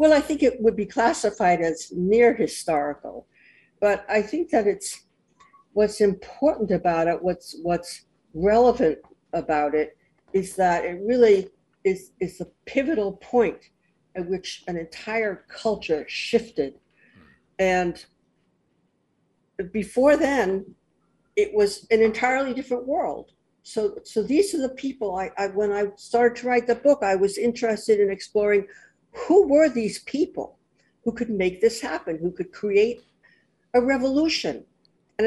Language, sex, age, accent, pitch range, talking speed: English, female, 60-79, American, 185-245 Hz, 140 wpm